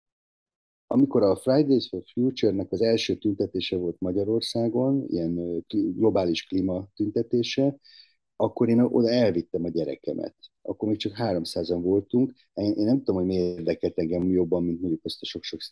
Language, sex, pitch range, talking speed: Hungarian, male, 90-120 Hz, 150 wpm